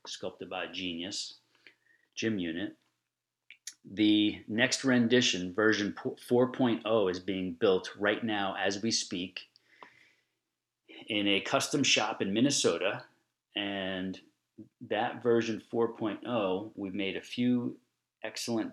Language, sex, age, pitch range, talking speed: English, male, 40-59, 100-125 Hz, 105 wpm